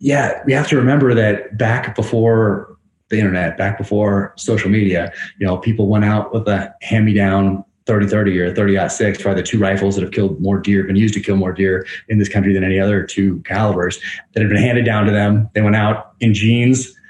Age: 30-49